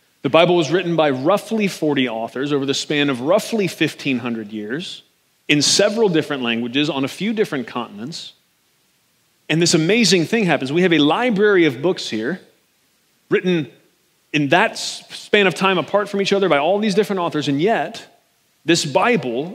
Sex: male